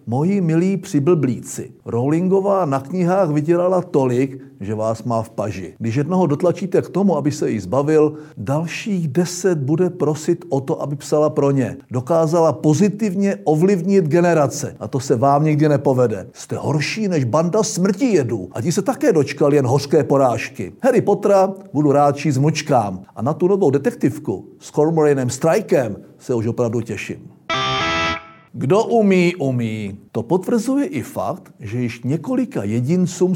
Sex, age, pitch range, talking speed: male, 50-69, 135-185 Hz, 155 wpm